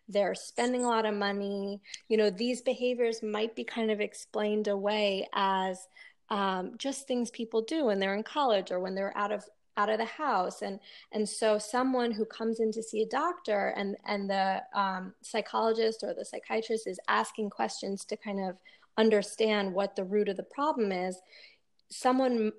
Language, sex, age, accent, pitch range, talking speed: English, female, 20-39, American, 195-225 Hz, 185 wpm